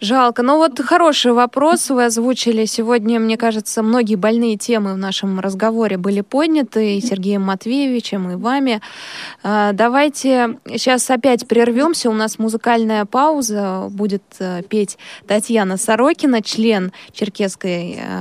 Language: Russian